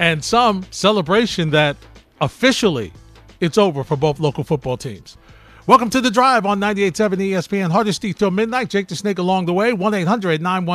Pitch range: 160-200 Hz